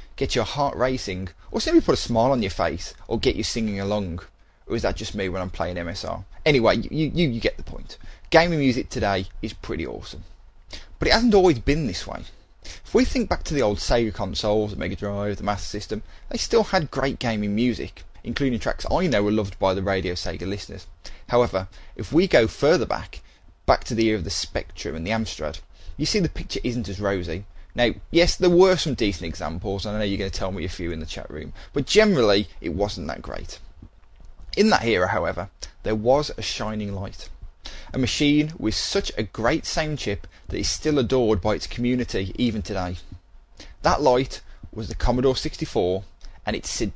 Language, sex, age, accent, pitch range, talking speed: English, male, 20-39, British, 90-125 Hz, 210 wpm